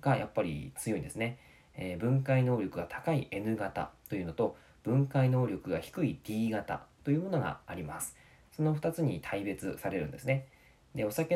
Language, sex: Japanese, male